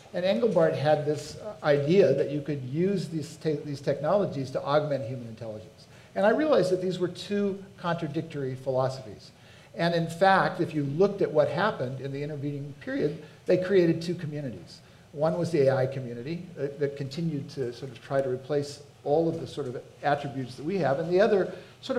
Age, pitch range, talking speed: 50-69, 135-180 Hz, 190 wpm